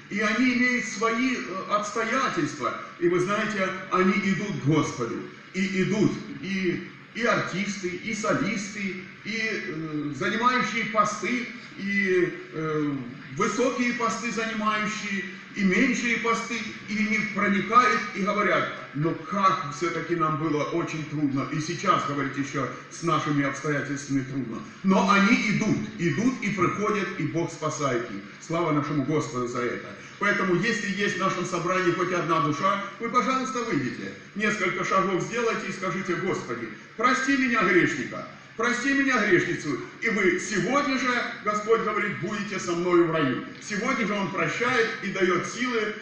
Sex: male